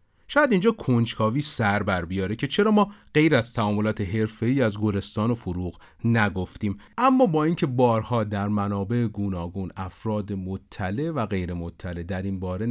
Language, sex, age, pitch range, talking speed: Persian, male, 40-59, 95-125 Hz, 155 wpm